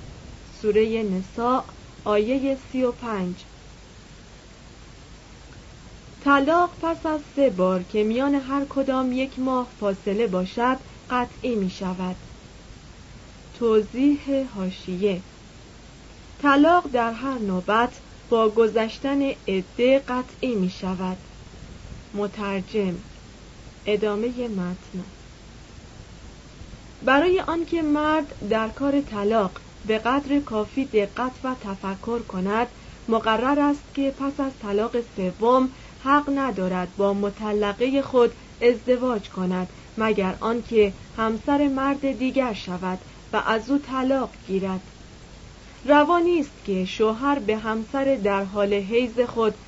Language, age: Persian, 40-59